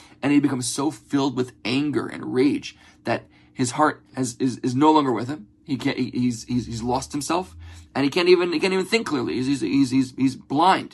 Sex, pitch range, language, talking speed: male, 120-190 Hz, English, 225 wpm